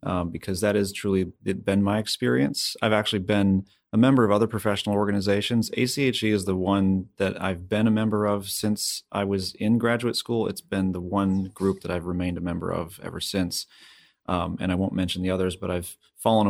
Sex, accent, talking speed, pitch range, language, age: male, American, 205 wpm, 90-105 Hz, English, 30-49